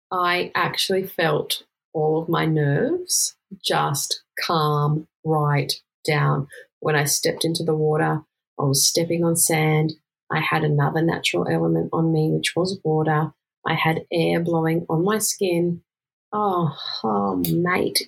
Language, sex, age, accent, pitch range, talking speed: English, female, 30-49, Australian, 150-190 Hz, 140 wpm